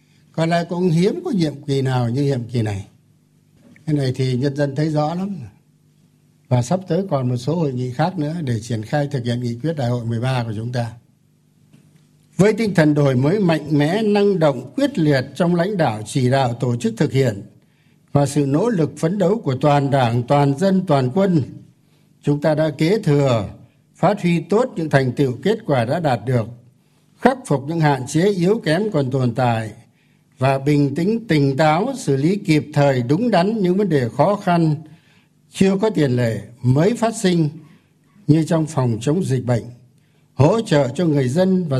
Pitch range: 135-170 Hz